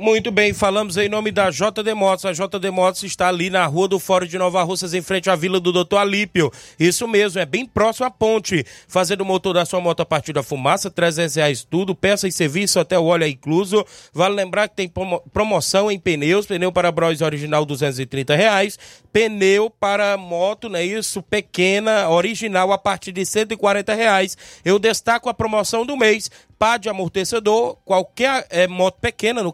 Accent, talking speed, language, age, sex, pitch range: Brazilian, 195 wpm, Portuguese, 20-39, male, 180-205 Hz